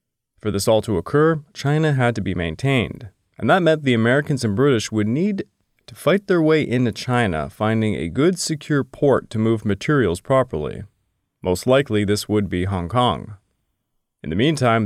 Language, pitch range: English, 100-125 Hz